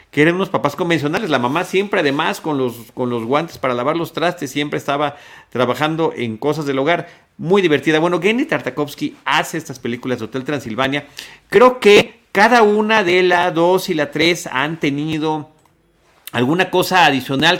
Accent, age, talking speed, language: Mexican, 40-59, 175 wpm, Spanish